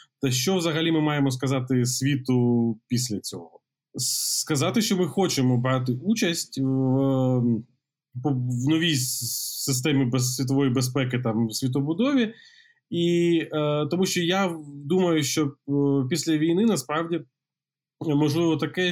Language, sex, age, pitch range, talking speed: Ukrainian, male, 20-39, 130-160 Hz, 105 wpm